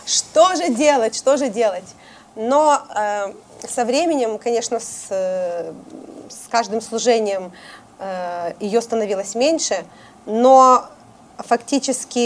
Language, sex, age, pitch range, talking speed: Russian, female, 30-49, 215-255 Hz, 110 wpm